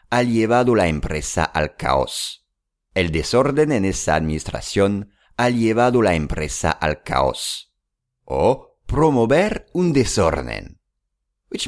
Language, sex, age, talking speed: English, male, 50-69, 115 wpm